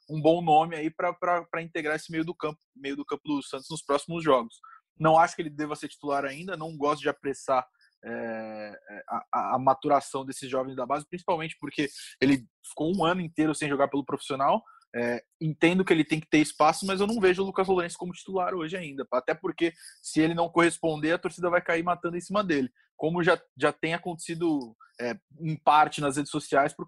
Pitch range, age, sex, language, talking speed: 140-170 Hz, 20-39, male, Portuguese, 200 wpm